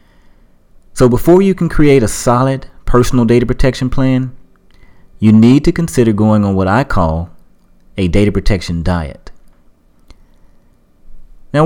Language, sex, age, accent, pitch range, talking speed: English, male, 30-49, American, 90-135 Hz, 130 wpm